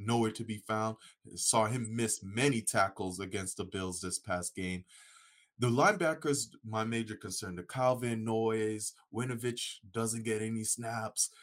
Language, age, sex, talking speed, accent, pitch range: English, 20-39, male, 145 wpm, American, 95-115 Hz